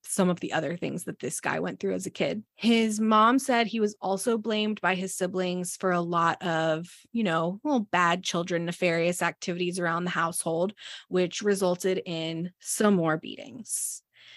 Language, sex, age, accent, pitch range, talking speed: English, female, 20-39, American, 185-220 Hz, 180 wpm